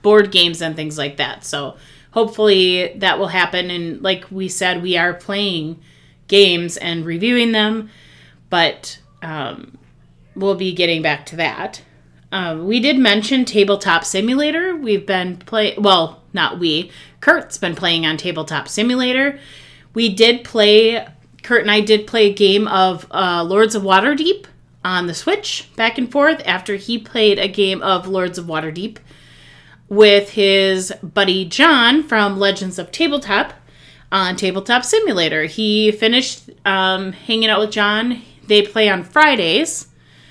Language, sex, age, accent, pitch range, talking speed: English, female, 30-49, American, 175-215 Hz, 150 wpm